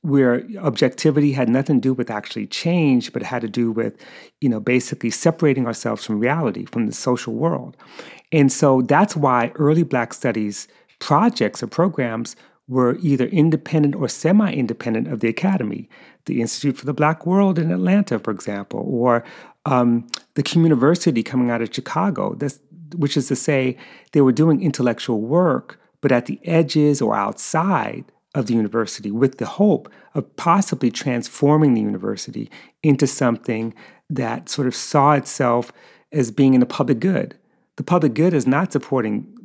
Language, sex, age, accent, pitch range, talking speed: English, male, 30-49, American, 120-155 Hz, 165 wpm